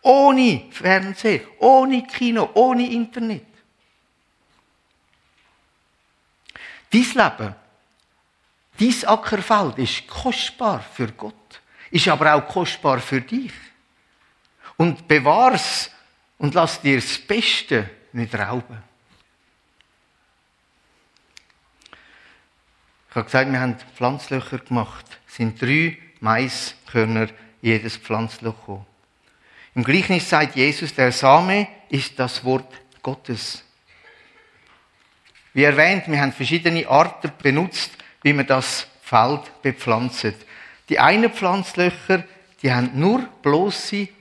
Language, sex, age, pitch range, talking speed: German, male, 60-79, 120-190 Hz, 95 wpm